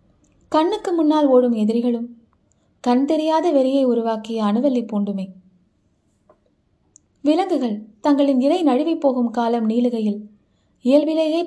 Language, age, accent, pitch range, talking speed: Tamil, 20-39, native, 215-275 Hz, 95 wpm